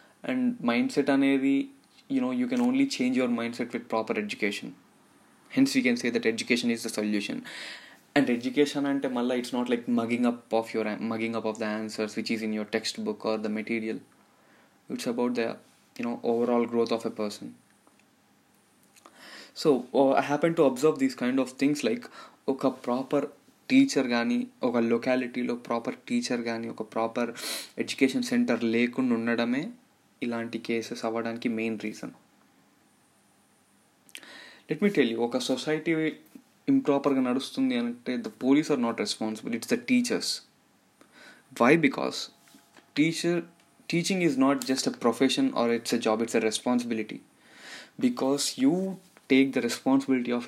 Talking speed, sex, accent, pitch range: 150 wpm, male, native, 115-170 Hz